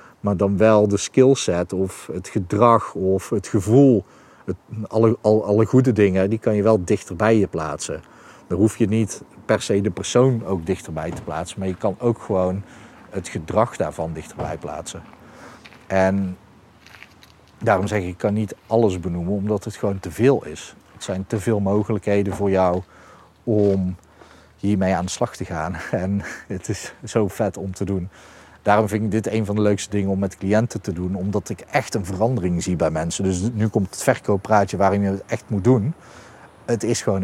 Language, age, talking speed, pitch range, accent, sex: Dutch, 40-59, 190 wpm, 95-115 Hz, Dutch, male